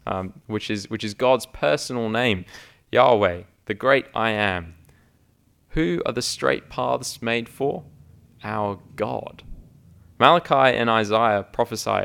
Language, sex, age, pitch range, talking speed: English, male, 20-39, 100-125 Hz, 125 wpm